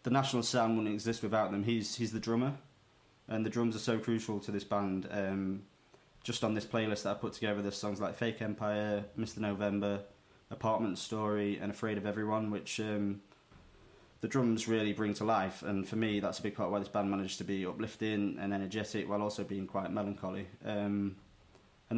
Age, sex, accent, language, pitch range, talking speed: 20-39, male, British, English, 100-110 Hz, 200 wpm